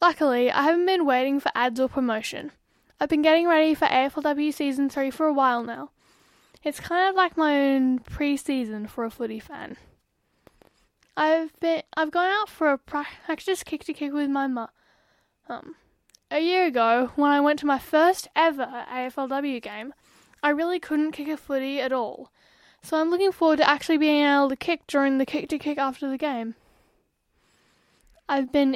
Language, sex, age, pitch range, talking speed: English, female, 10-29, 270-320 Hz, 180 wpm